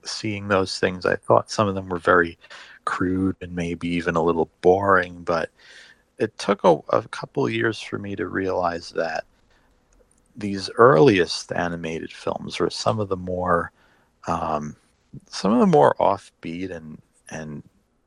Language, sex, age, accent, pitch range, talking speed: English, male, 40-59, American, 85-110 Hz, 155 wpm